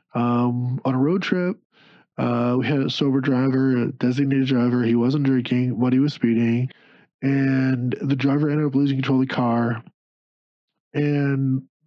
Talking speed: 160 wpm